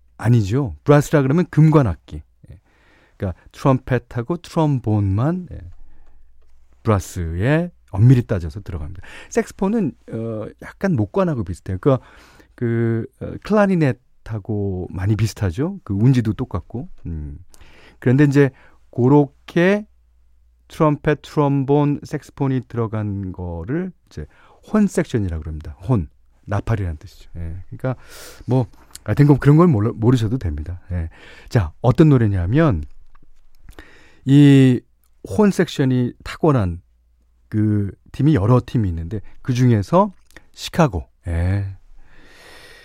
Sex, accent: male, native